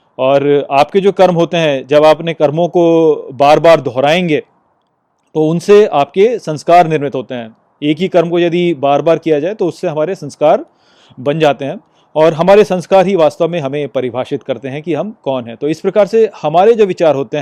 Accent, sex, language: native, male, Hindi